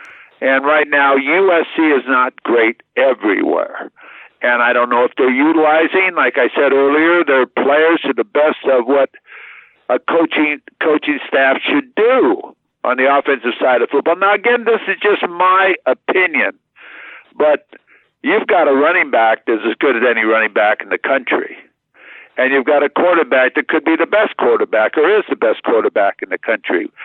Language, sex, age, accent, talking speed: English, male, 60-79, American, 175 wpm